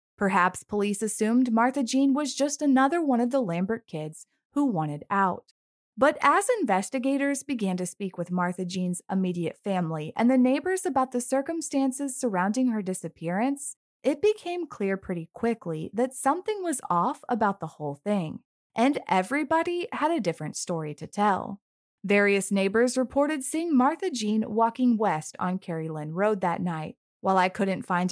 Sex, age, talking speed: female, 20-39, 160 wpm